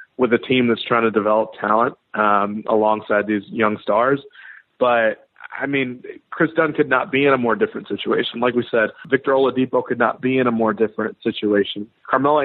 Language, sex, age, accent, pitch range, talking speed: English, male, 30-49, American, 110-130 Hz, 195 wpm